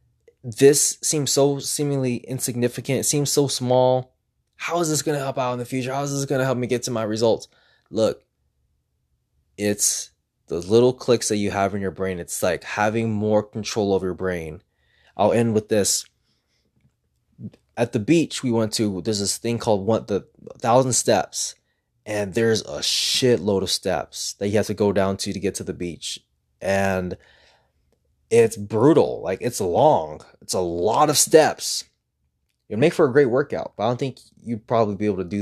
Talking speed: 190 wpm